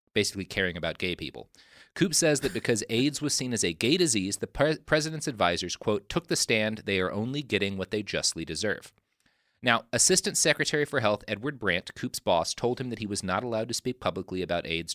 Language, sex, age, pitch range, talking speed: English, male, 30-49, 90-120 Hz, 210 wpm